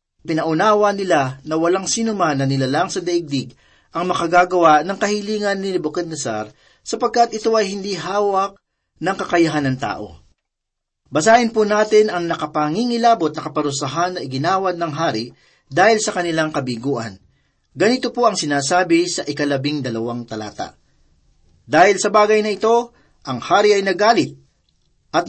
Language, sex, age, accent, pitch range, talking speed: Filipino, male, 40-59, native, 140-195 Hz, 135 wpm